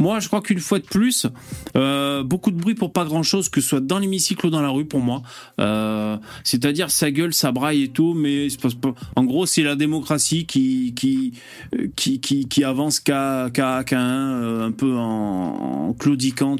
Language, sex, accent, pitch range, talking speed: French, male, French, 135-200 Hz, 205 wpm